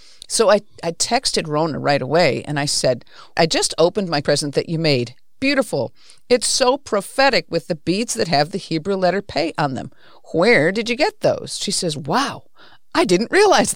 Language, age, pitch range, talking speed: English, 50-69, 155-220 Hz, 190 wpm